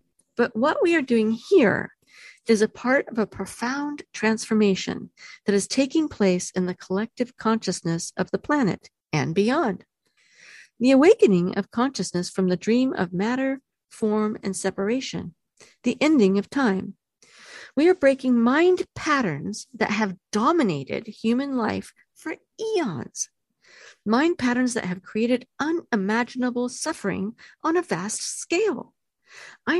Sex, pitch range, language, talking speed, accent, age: female, 190-270 Hz, English, 135 wpm, American, 50-69